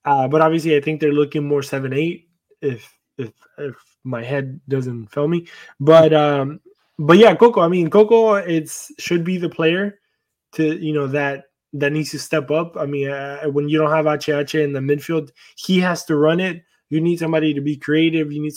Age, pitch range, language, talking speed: 20-39, 140-160 Hz, English, 205 wpm